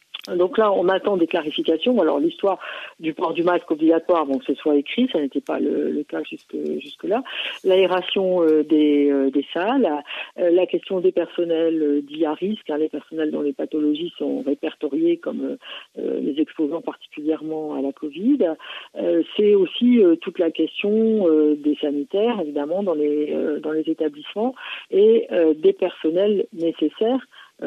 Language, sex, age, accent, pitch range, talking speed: French, female, 50-69, French, 155-215 Hz, 180 wpm